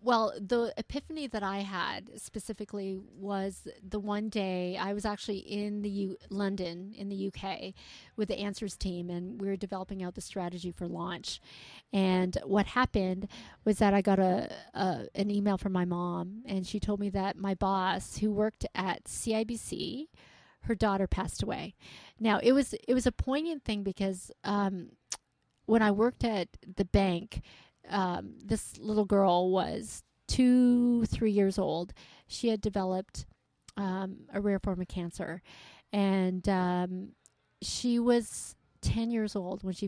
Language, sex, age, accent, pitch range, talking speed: English, female, 40-59, American, 190-220 Hz, 160 wpm